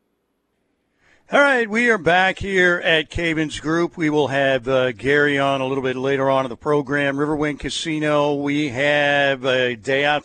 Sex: male